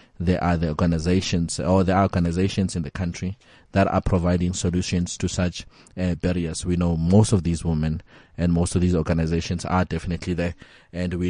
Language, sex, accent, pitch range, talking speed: English, male, South African, 85-100 Hz, 185 wpm